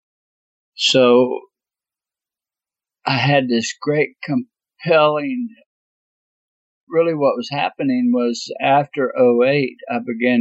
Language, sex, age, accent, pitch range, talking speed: English, male, 60-79, American, 110-165 Hz, 85 wpm